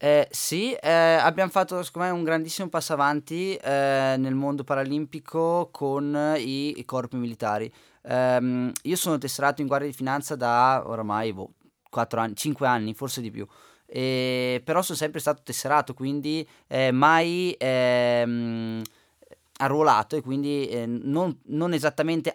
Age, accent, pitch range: 20-39, native, 120-145 Hz